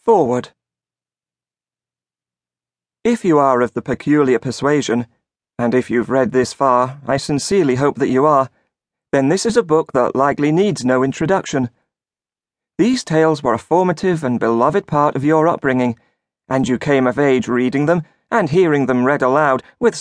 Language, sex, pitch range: English, male, 125-155 Hz